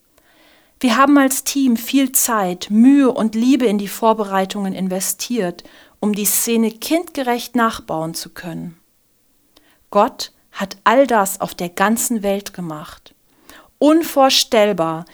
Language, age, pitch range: German, 40-59, 190-260 Hz